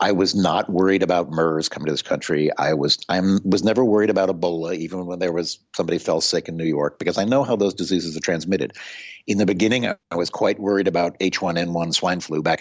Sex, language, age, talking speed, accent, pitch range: male, English, 50-69, 235 wpm, American, 85-115 Hz